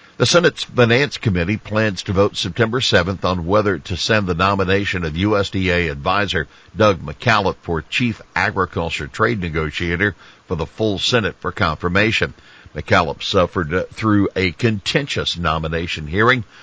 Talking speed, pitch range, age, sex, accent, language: 135 wpm, 85-105 Hz, 60-79, male, American, English